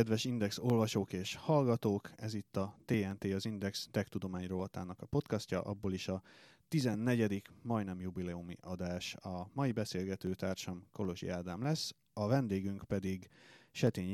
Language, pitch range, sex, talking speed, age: Hungarian, 95-115 Hz, male, 145 wpm, 30-49